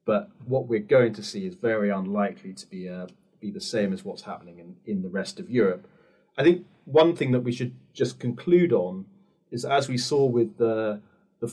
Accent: British